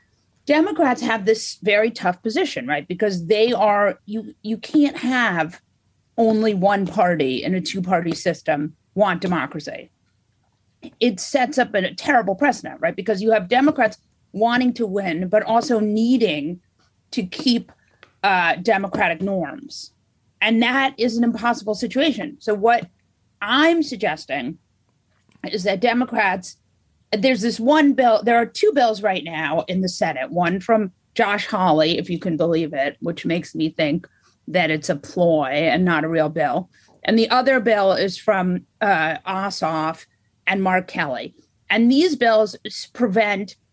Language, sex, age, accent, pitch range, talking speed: English, female, 40-59, American, 175-240 Hz, 150 wpm